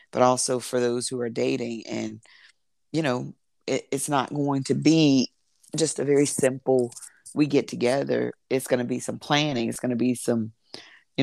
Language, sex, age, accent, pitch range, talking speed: English, female, 40-59, American, 120-140 Hz, 180 wpm